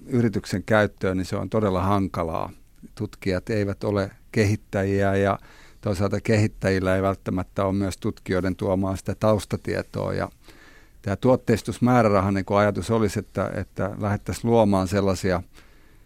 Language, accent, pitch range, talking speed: Finnish, native, 95-105 Hz, 125 wpm